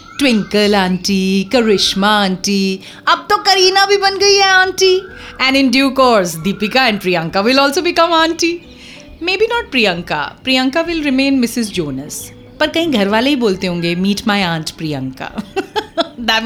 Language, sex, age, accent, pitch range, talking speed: English, female, 30-49, Indian, 200-320 Hz, 150 wpm